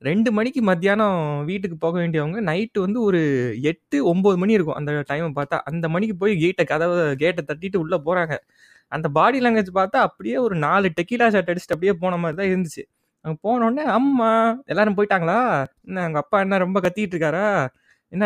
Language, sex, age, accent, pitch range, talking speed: Tamil, male, 20-39, native, 170-225 Hz, 165 wpm